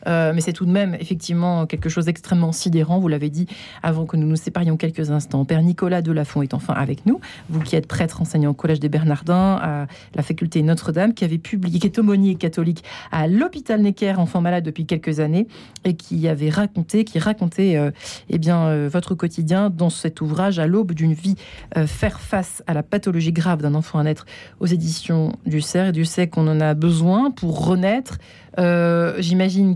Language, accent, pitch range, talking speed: French, French, 160-185 Hz, 205 wpm